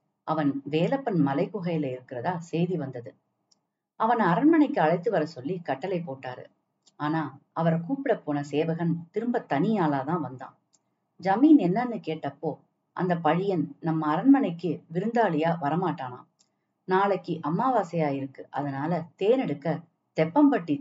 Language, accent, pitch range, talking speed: Tamil, native, 150-205 Hz, 100 wpm